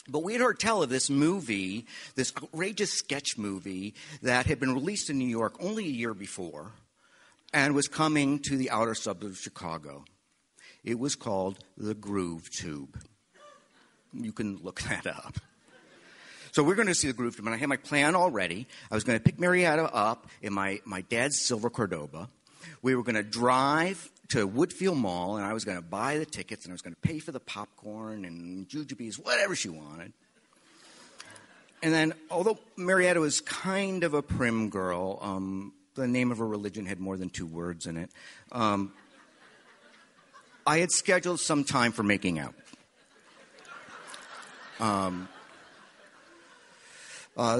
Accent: American